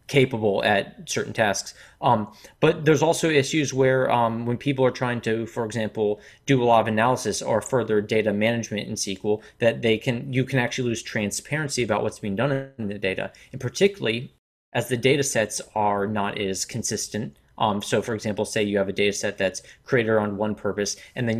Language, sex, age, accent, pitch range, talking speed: English, male, 30-49, American, 105-130 Hz, 200 wpm